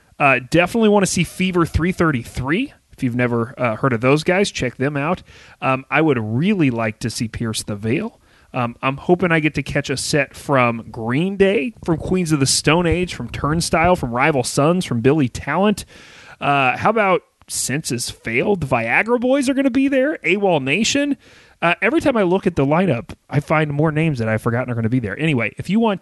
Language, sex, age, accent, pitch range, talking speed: English, male, 30-49, American, 115-165 Hz, 215 wpm